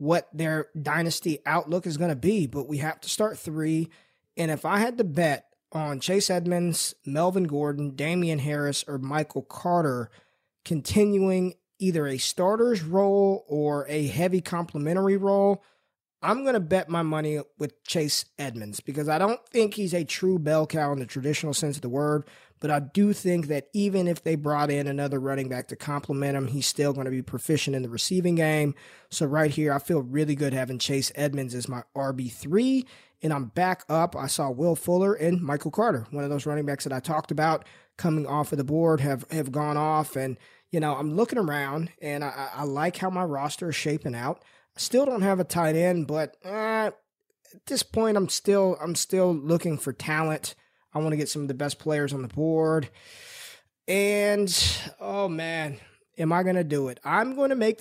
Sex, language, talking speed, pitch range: male, English, 195 wpm, 145-185 Hz